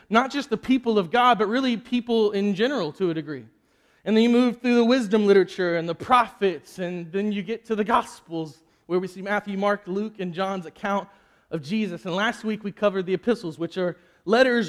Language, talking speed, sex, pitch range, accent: English, 215 wpm, male, 190-230 Hz, American